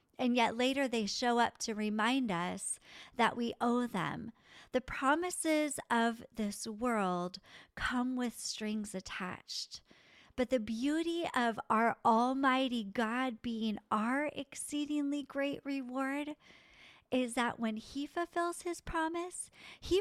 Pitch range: 220-280 Hz